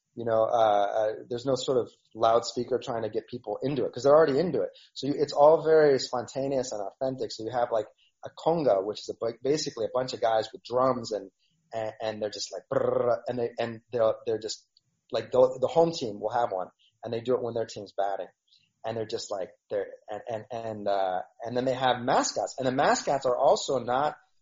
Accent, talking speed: American, 225 wpm